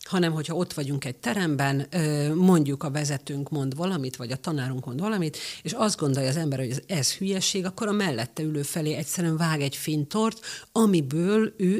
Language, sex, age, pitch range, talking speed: Hungarian, female, 50-69, 140-175 Hz, 180 wpm